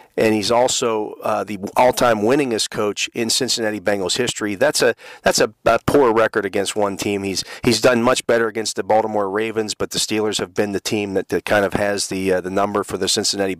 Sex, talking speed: male, 220 wpm